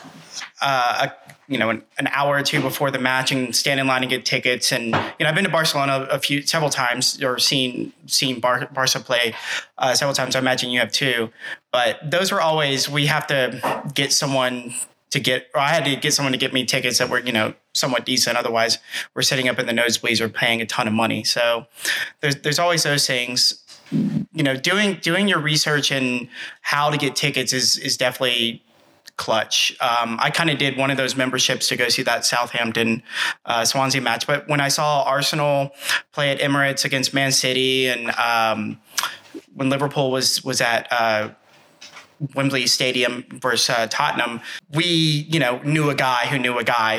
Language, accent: English, American